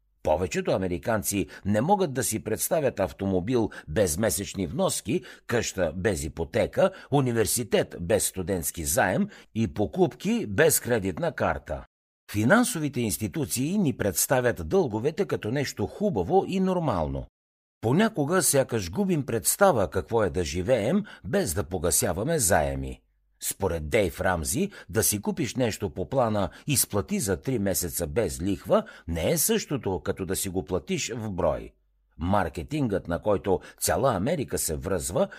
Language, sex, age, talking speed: Bulgarian, male, 60-79, 130 wpm